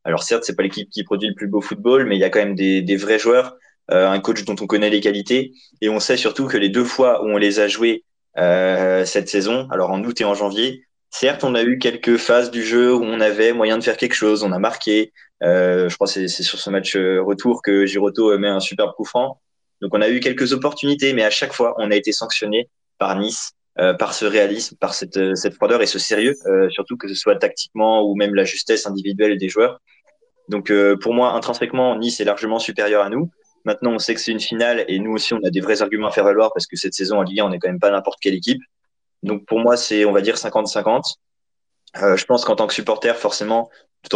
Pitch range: 100-120 Hz